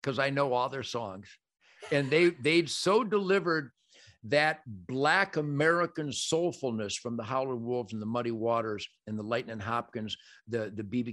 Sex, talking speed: male, 160 wpm